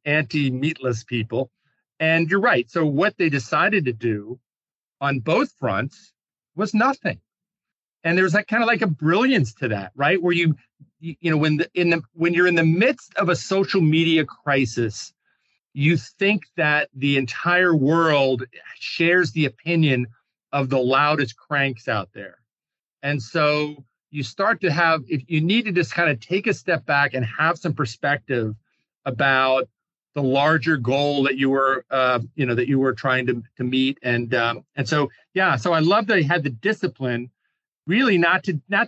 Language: English